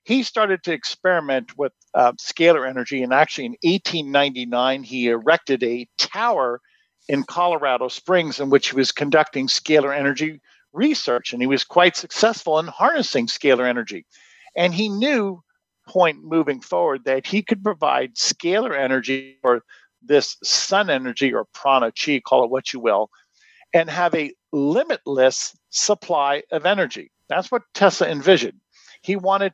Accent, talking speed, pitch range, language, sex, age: American, 150 wpm, 140-195 Hz, English, male, 50-69